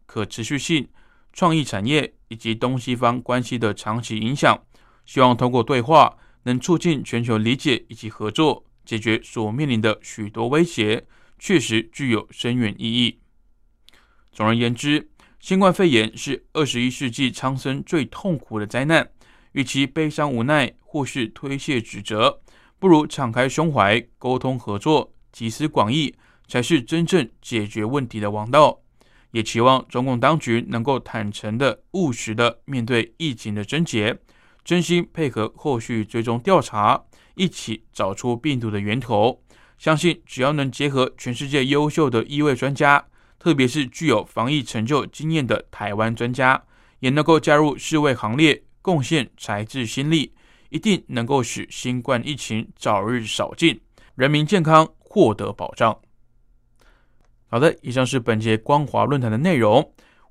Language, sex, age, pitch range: Chinese, male, 20-39, 115-150 Hz